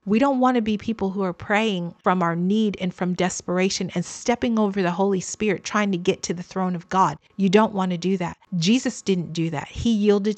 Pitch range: 175-205 Hz